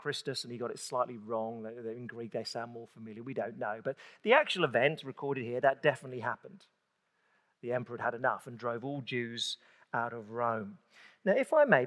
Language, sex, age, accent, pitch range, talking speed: English, male, 40-59, British, 120-160 Hz, 205 wpm